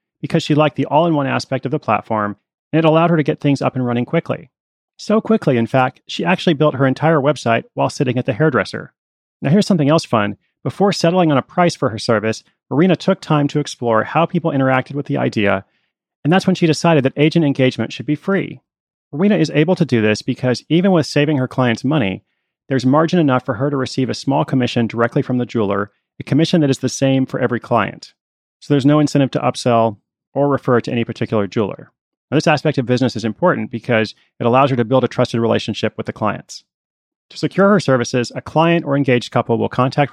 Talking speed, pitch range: 220 wpm, 120-155 Hz